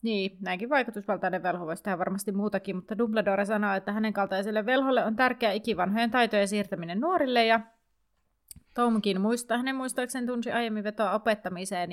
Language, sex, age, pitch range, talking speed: Finnish, female, 30-49, 190-240 Hz, 150 wpm